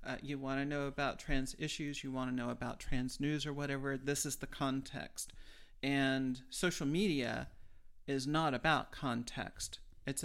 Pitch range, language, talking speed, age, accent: 130-155 Hz, English, 170 wpm, 40-59, American